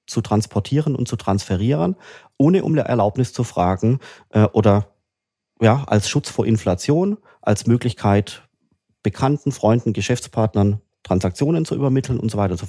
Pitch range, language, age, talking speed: 105-130 Hz, German, 30-49, 130 wpm